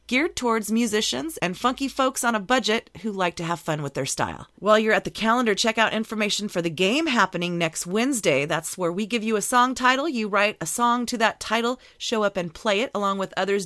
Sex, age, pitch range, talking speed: female, 30-49, 175-230 Hz, 235 wpm